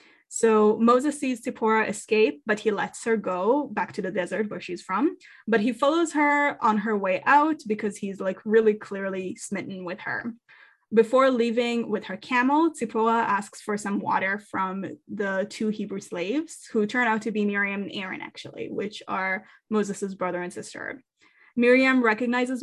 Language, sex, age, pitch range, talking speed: English, female, 10-29, 200-250 Hz, 170 wpm